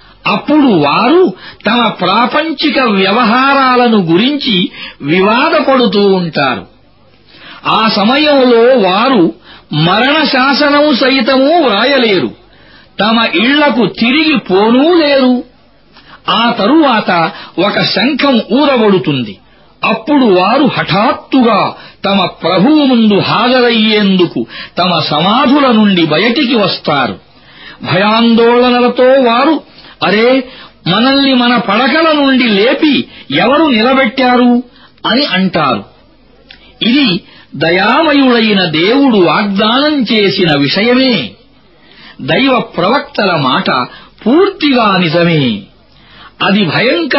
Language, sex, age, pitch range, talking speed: Arabic, male, 50-69, 195-270 Hz, 60 wpm